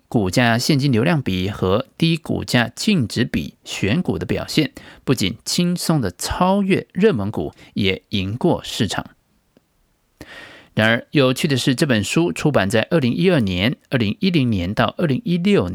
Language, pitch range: Chinese, 105-155 Hz